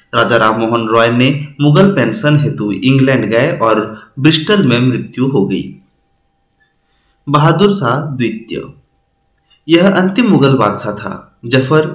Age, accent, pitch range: 30-49, Indian, 110-145 Hz